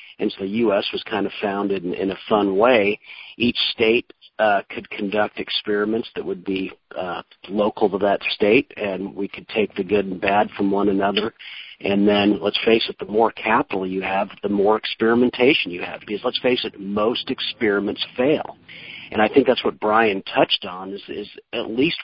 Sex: male